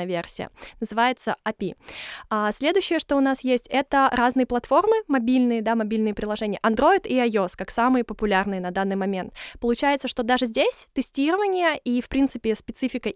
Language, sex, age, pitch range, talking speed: Russian, female, 20-39, 220-270 Hz, 155 wpm